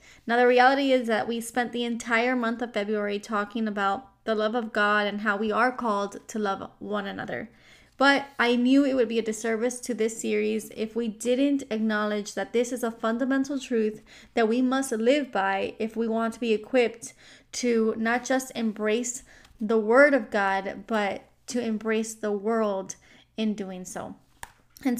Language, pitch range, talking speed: English, 210-245 Hz, 180 wpm